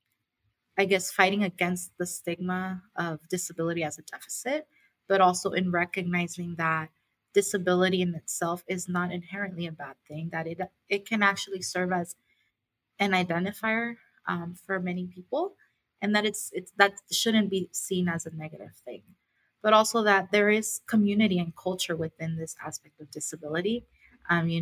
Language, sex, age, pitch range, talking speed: English, female, 20-39, 170-195 Hz, 160 wpm